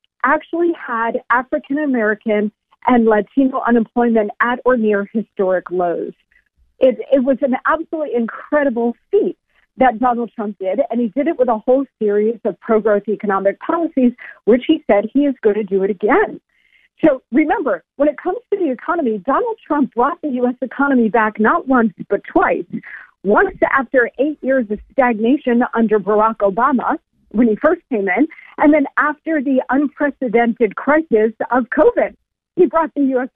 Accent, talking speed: American, 160 wpm